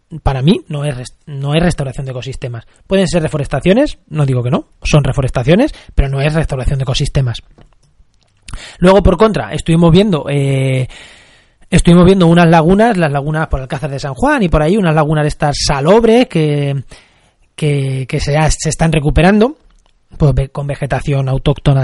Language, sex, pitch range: Spanish, male, 140-175 Hz